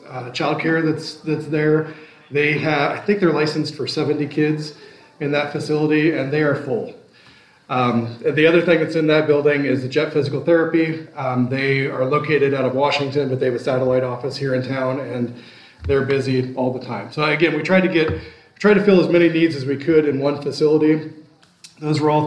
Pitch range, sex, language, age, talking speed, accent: 130-155 Hz, male, English, 30-49, 210 wpm, American